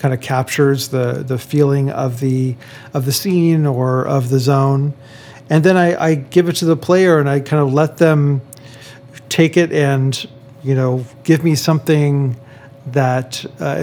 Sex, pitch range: male, 135-150 Hz